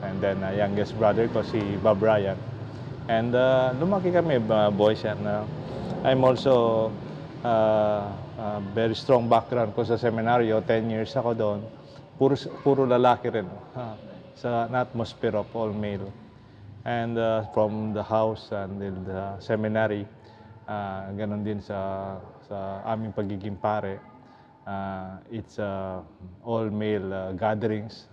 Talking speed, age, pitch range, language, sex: 130 wpm, 20-39, 100-120 Hz, English, male